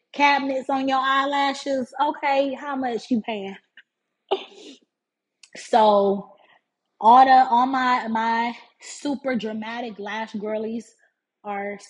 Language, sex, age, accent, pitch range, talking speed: English, female, 20-39, American, 205-265 Hz, 100 wpm